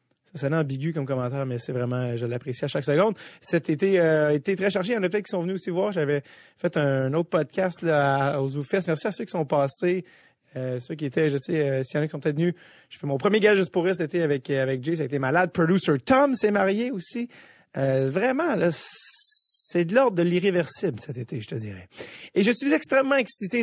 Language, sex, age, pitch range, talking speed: French, male, 30-49, 140-195 Hz, 250 wpm